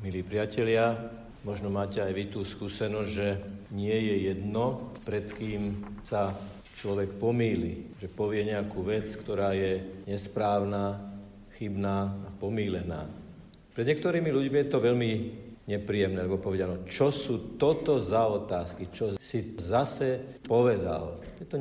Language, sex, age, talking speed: Slovak, male, 50-69, 130 wpm